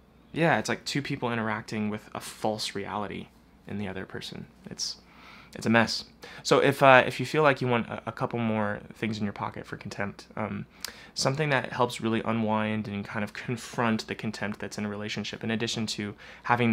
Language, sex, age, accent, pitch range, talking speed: English, male, 20-39, American, 105-130 Hz, 205 wpm